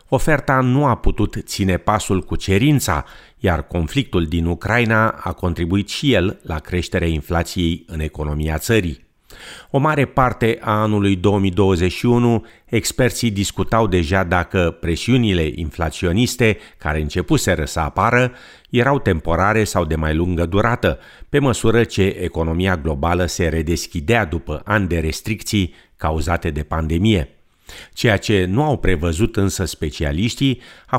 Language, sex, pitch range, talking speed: Romanian, male, 80-110 Hz, 130 wpm